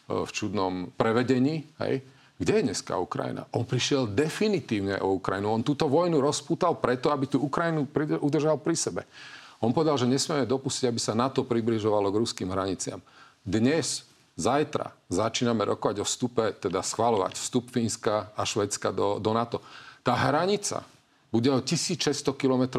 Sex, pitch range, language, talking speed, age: male, 110-140 Hz, Slovak, 150 wpm, 40-59